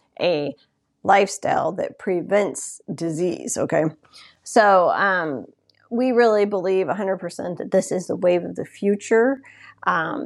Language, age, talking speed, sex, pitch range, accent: English, 40-59, 130 wpm, female, 180-245 Hz, American